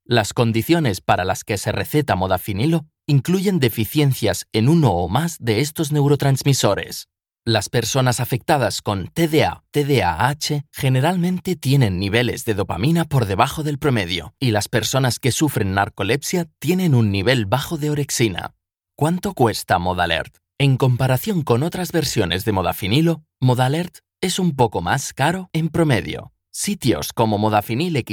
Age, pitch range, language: 30-49, 110-160 Hz, English